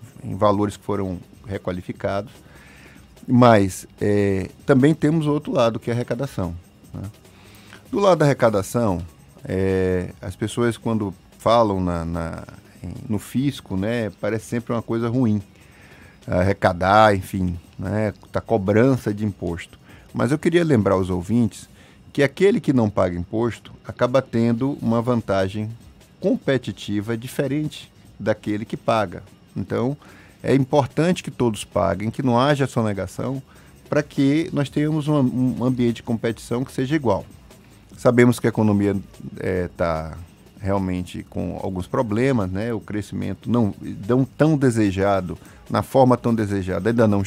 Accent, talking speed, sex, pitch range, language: Brazilian, 130 wpm, male, 95-130 Hz, Portuguese